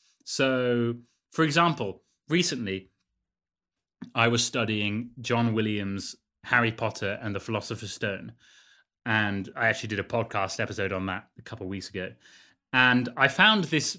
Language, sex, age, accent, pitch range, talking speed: English, male, 30-49, British, 110-140 Hz, 140 wpm